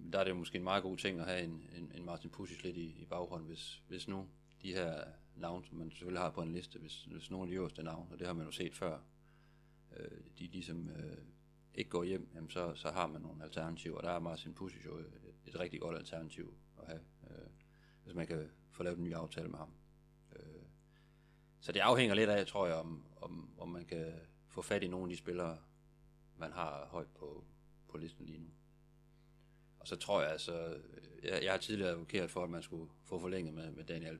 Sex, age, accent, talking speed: male, 40-59, native, 225 wpm